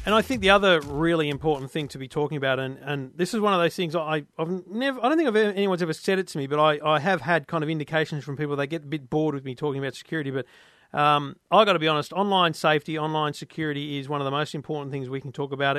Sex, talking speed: male, 280 wpm